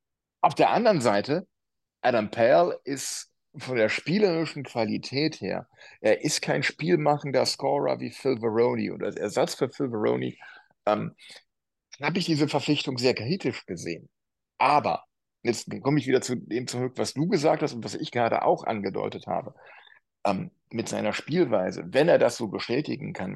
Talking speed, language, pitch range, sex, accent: 160 wpm, German, 115-155 Hz, male, German